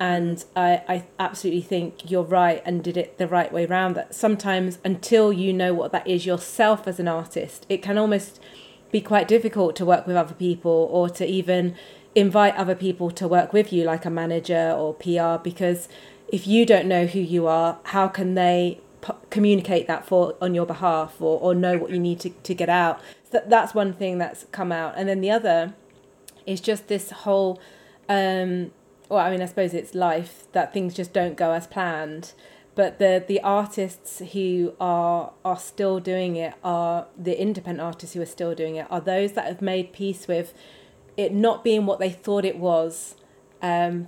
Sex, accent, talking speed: female, British, 195 wpm